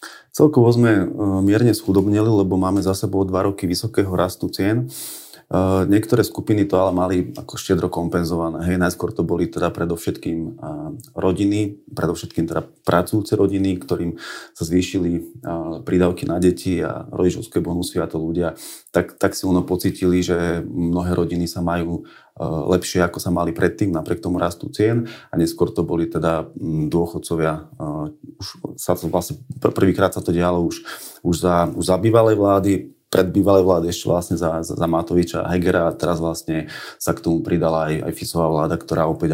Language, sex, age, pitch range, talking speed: Slovak, male, 30-49, 85-95 Hz, 155 wpm